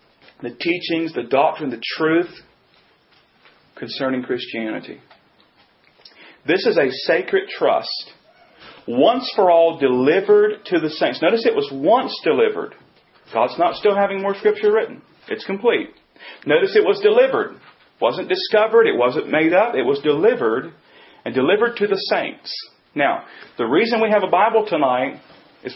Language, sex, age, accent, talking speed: English, male, 40-59, American, 145 wpm